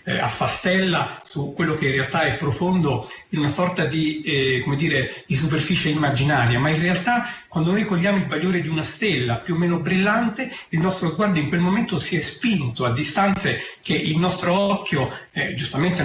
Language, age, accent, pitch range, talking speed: Italian, 40-59, native, 145-200 Hz, 180 wpm